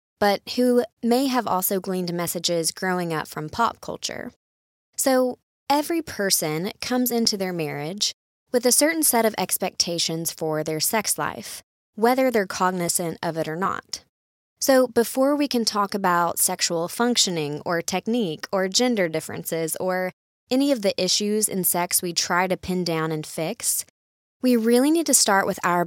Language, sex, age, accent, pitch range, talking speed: English, female, 20-39, American, 175-230 Hz, 160 wpm